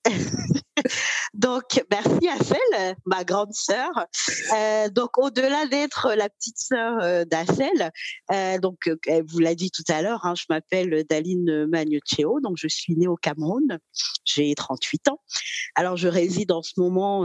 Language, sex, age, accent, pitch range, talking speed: French, female, 40-59, French, 155-205 Hz, 155 wpm